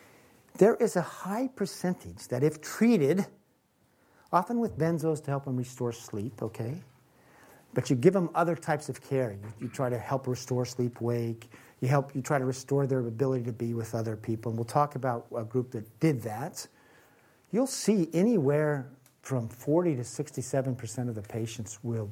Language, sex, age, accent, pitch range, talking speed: English, male, 50-69, American, 120-165 Hz, 175 wpm